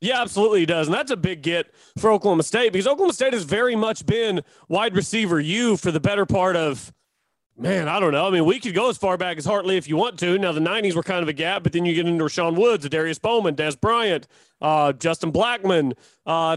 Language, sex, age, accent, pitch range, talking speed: English, male, 30-49, American, 175-235 Hz, 245 wpm